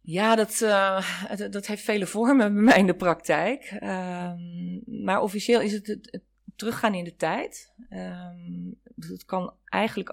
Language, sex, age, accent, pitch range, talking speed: Dutch, female, 30-49, Dutch, 160-205 Hz, 160 wpm